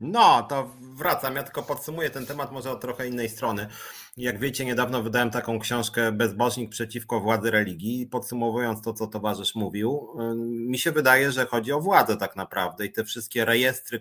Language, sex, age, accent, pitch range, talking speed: Polish, male, 30-49, native, 110-125 Hz, 175 wpm